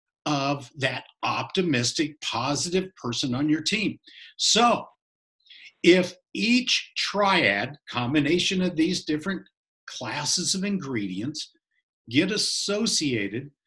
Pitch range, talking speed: 155-200 Hz, 90 wpm